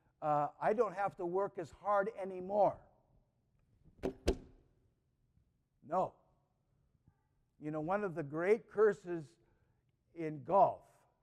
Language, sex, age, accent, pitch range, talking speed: English, male, 60-79, American, 130-185 Hz, 100 wpm